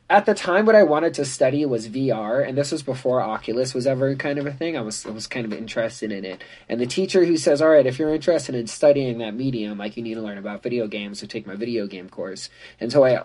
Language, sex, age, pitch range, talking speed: English, male, 20-39, 115-150 Hz, 275 wpm